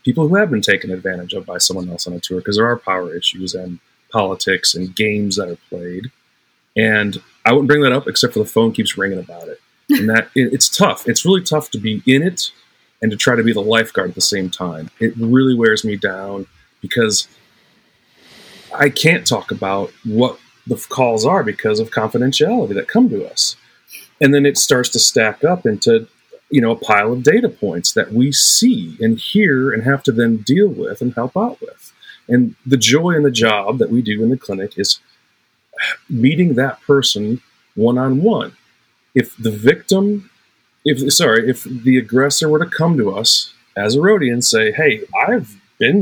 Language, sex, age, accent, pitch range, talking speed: English, male, 30-49, American, 110-150 Hz, 195 wpm